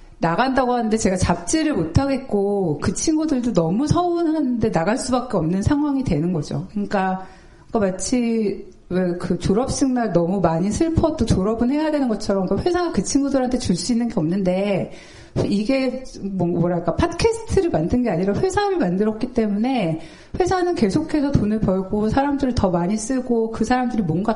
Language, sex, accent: Korean, female, native